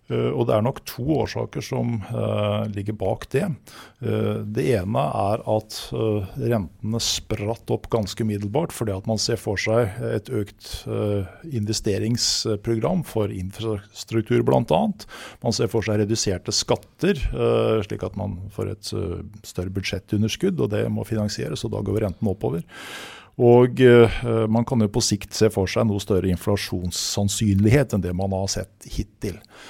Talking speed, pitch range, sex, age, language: 170 wpm, 100-115 Hz, male, 50-69, English